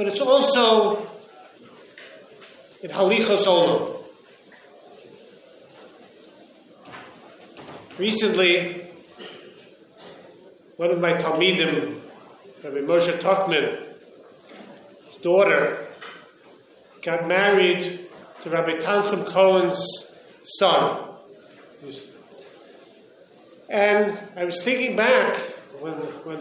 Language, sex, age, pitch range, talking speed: English, male, 40-59, 175-270 Hz, 65 wpm